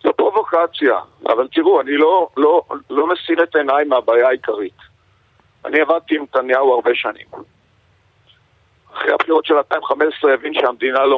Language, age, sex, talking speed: Hebrew, 50-69, male, 140 wpm